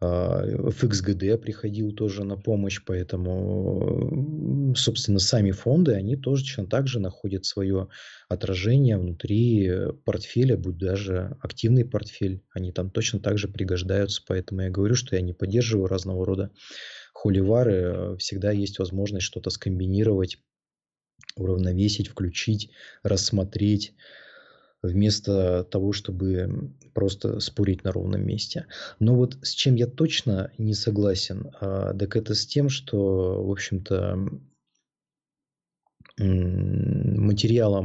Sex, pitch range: male, 95-110 Hz